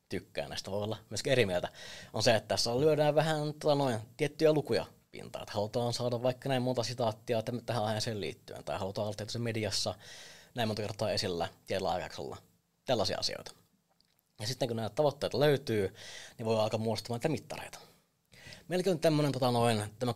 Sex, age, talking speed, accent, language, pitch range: male, 20-39, 170 wpm, native, Finnish, 105-130 Hz